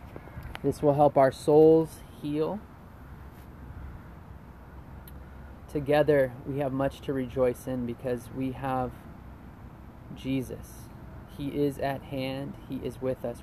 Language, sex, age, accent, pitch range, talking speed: English, male, 20-39, American, 105-135 Hz, 110 wpm